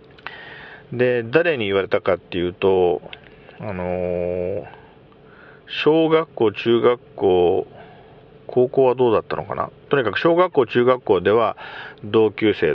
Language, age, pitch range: Japanese, 50-69, 100-145 Hz